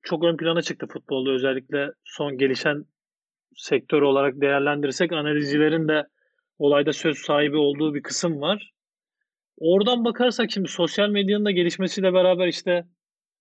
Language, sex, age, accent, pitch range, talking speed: Turkish, male, 40-59, native, 155-200 Hz, 130 wpm